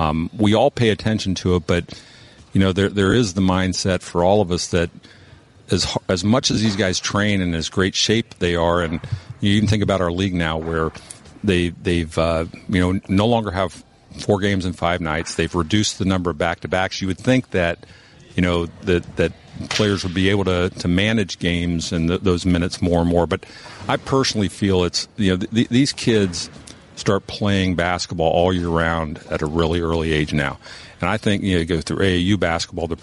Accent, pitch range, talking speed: American, 85-100 Hz, 220 wpm